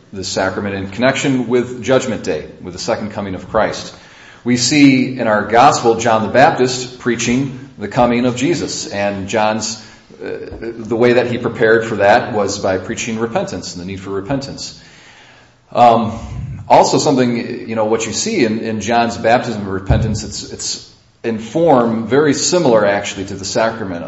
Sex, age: male, 40-59